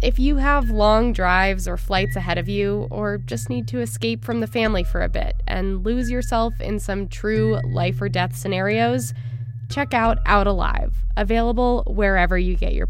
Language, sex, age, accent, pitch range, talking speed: English, female, 20-39, American, 165-230 Hz, 185 wpm